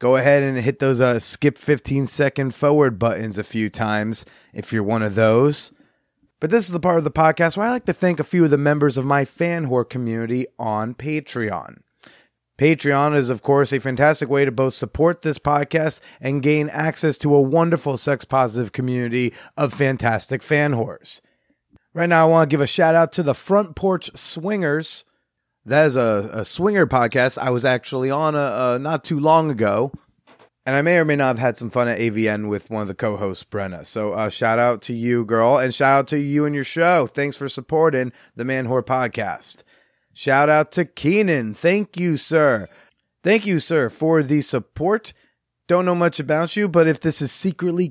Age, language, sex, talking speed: 30-49, English, male, 205 wpm